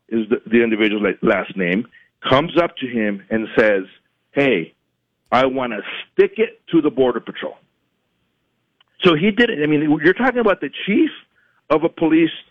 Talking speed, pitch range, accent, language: 175 wpm, 125-175 Hz, American, English